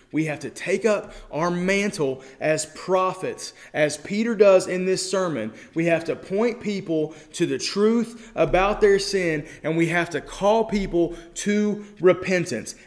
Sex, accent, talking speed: male, American, 160 wpm